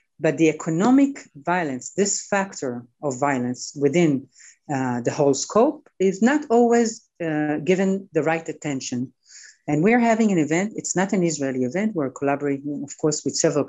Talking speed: 160 wpm